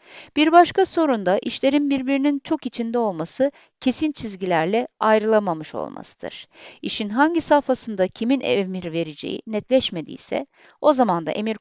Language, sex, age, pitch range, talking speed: Turkish, female, 50-69, 195-275 Hz, 120 wpm